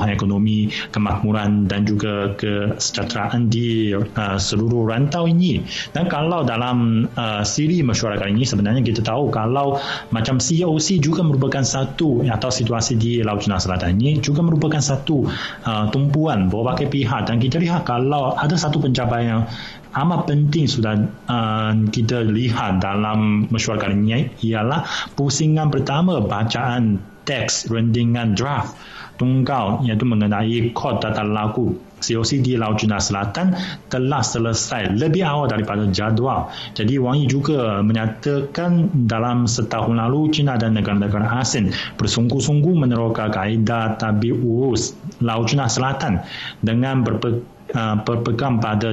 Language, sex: Malay, male